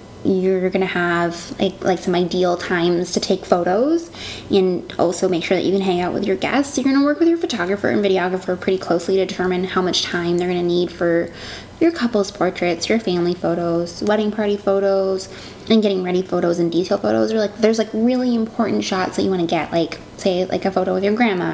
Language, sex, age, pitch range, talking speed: English, female, 20-39, 180-220 Hz, 225 wpm